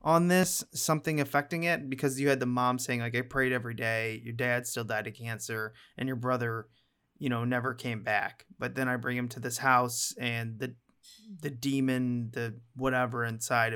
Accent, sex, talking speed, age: American, male, 195 wpm, 30-49